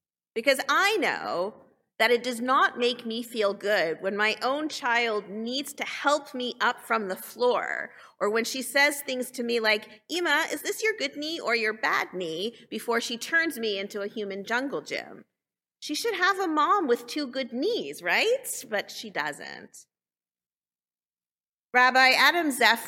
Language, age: English, 40-59